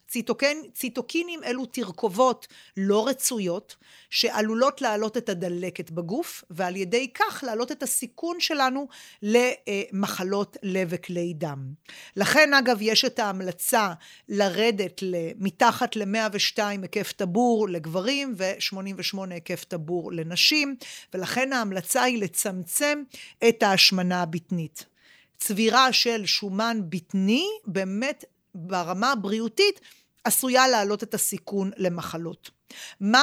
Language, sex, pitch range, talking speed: Hebrew, female, 190-255 Hz, 100 wpm